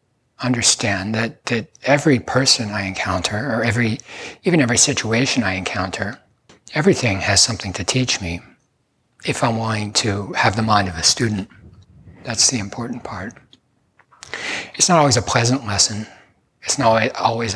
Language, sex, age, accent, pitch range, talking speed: English, male, 60-79, American, 105-130 Hz, 145 wpm